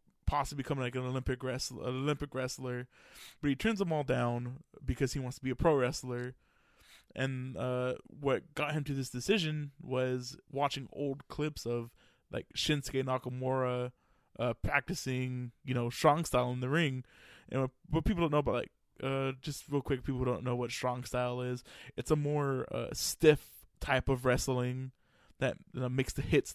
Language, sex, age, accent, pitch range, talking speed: English, male, 20-39, American, 125-140 Hz, 175 wpm